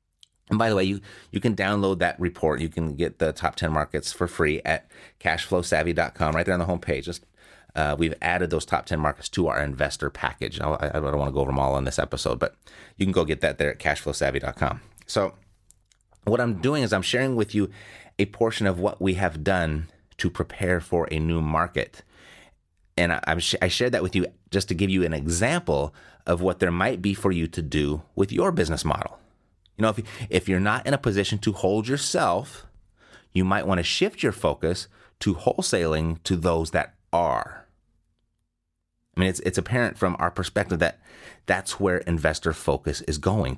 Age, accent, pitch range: 30-49, American, 80-100 Hz